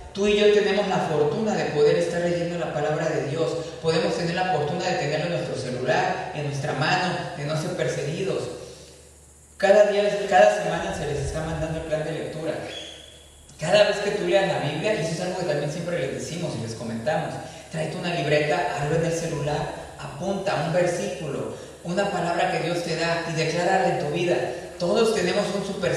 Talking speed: 200 wpm